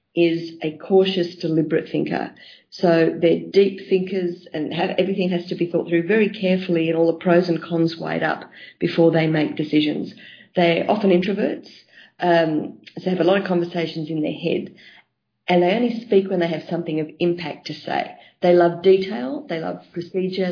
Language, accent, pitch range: English, Australian, 165-190 Hz